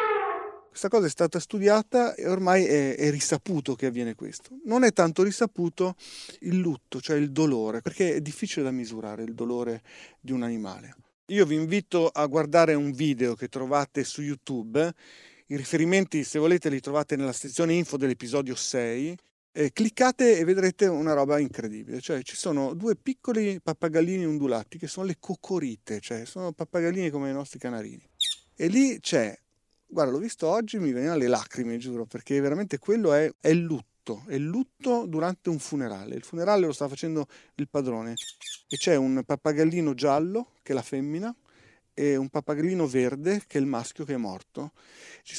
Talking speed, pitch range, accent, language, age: 175 wpm, 140-190 Hz, native, Italian, 40-59